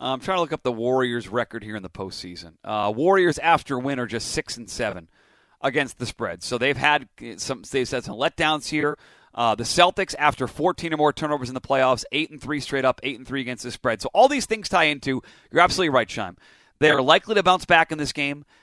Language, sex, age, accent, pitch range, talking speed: English, male, 30-49, American, 125-155 Hz, 240 wpm